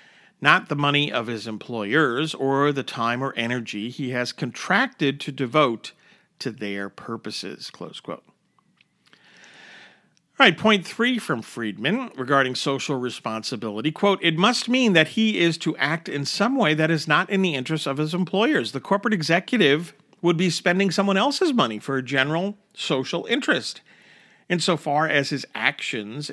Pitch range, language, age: 130-185 Hz, English, 50-69